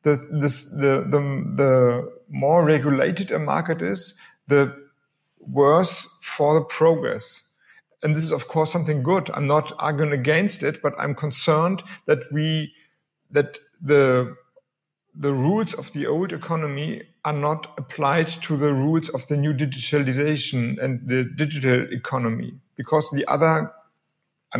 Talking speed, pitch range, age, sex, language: 140 wpm, 140-160 Hz, 50-69, male, English